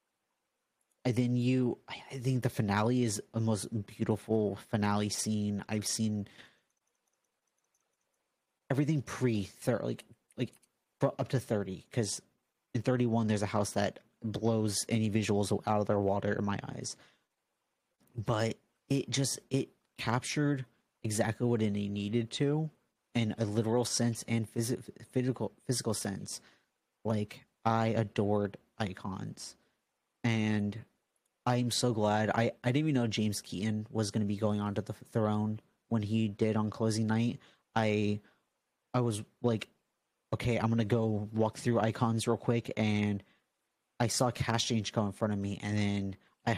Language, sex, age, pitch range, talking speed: English, male, 30-49, 105-120 Hz, 150 wpm